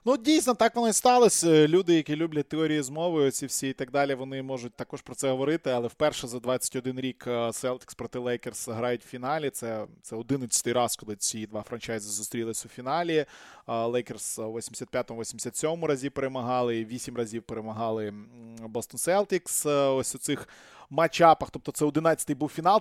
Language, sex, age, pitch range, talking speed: Russian, male, 20-39, 130-165 Hz, 160 wpm